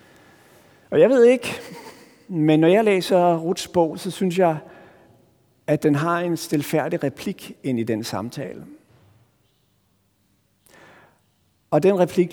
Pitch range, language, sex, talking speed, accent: 120-160 Hz, Danish, male, 125 wpm, native